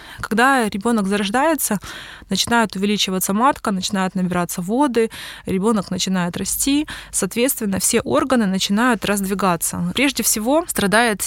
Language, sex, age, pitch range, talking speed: Russian, female, 20-39, 200-245 Hz, 105 wpm